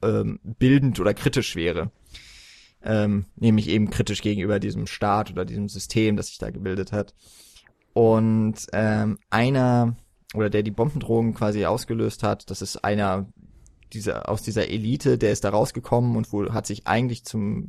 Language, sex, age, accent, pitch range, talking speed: German, male, 20-39, German, 105-125 Hz, 160 wpm